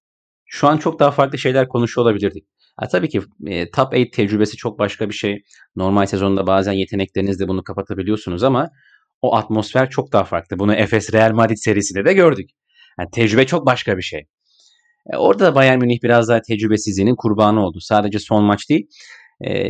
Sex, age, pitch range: male, 30-49, 105-135 Hz